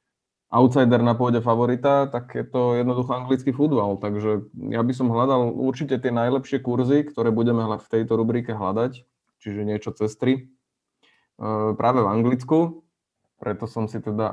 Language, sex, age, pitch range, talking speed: Slovak, male, 20-39, 110-130 Hz, 145 wpm